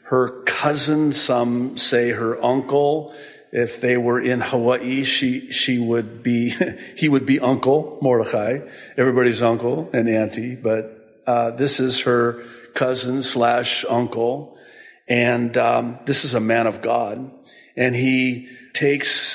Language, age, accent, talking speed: English, 50-69, American, 135 wpm